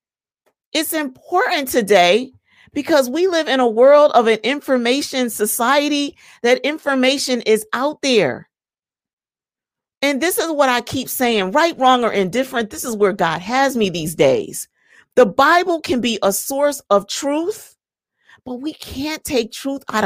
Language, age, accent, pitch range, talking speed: English, 40-59, American, 235-315 Hz, 155 wpm